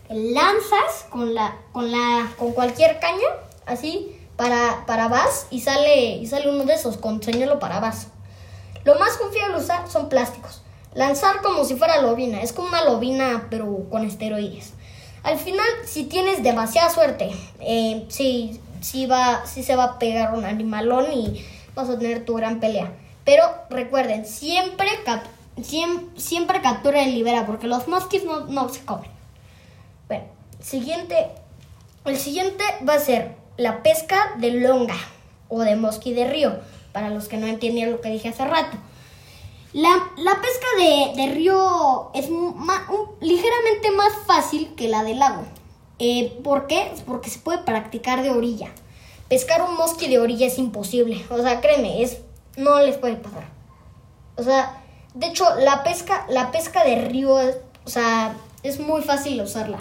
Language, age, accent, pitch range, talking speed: Spanish, 20-39, Mexican, 235-325 Hz, 165 wpm